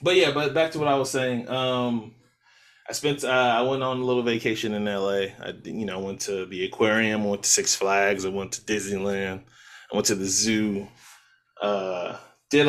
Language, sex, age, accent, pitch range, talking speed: English, male, 20-39, American, 105-135 Hz, 210 wpm